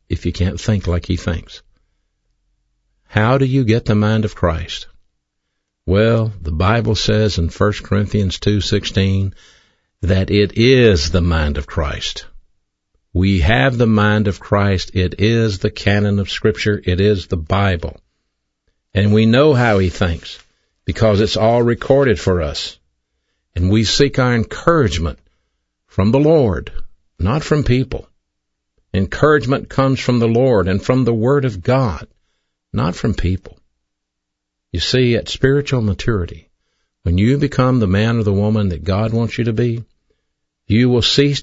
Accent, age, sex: American, 60-79, male